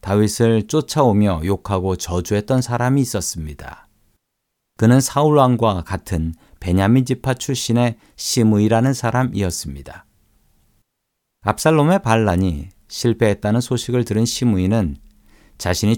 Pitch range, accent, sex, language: 95-125 Hz, native, male, Korean